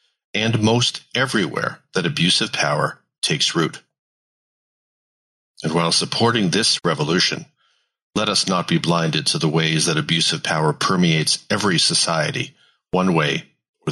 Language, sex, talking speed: English, male, 130 wpm